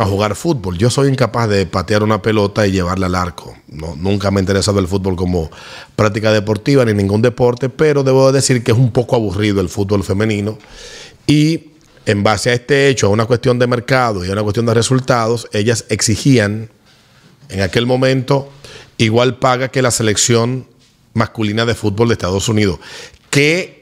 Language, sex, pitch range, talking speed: Spanish, male, 100-130 Hz, 180 wpm